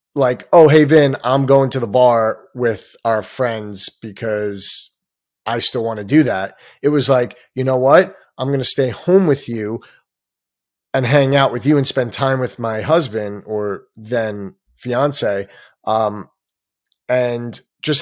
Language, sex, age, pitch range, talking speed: English, male, 30-49, 110-135 Hz, 165 wpm